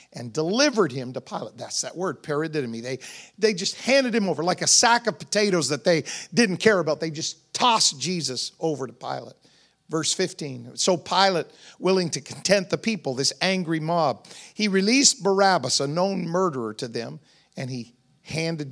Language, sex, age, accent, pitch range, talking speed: English, male, 50-69, American, 140-195 Hz, 175 wpm